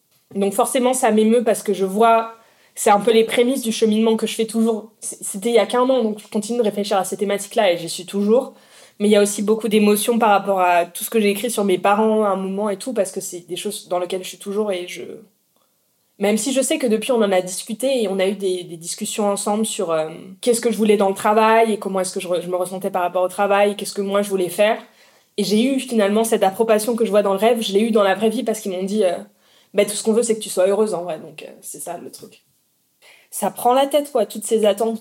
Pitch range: 200-230 Hz